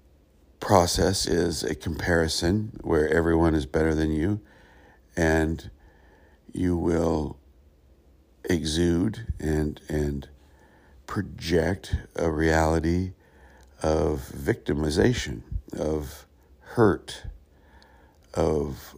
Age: 60-79